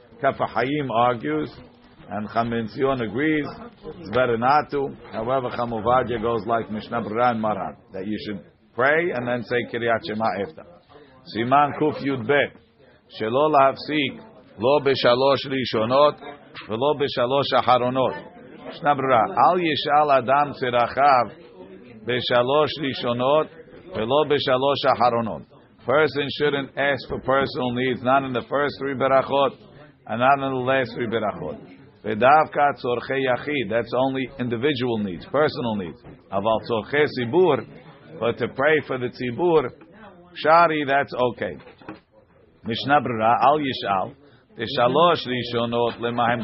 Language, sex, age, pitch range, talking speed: English, male, 50-69, 120-140 Hz, 115 wpm